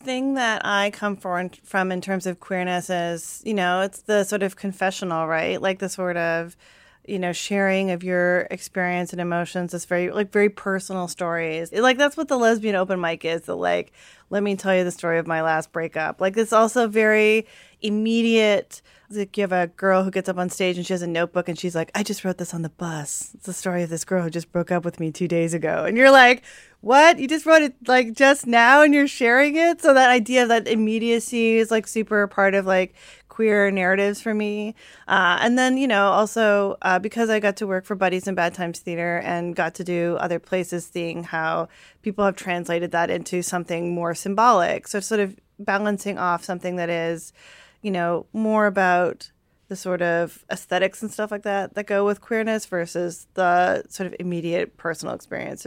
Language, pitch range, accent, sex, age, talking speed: English, 175-215 Hz, American, female, 30-49, 210 wpm